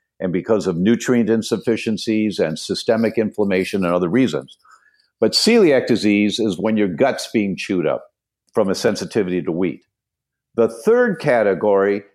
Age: 50-69